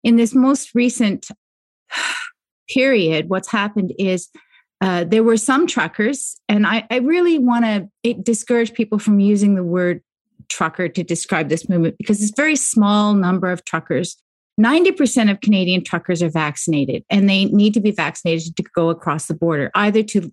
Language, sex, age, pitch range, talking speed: English, female, 30-49, 180-225 Hz, 170 wpm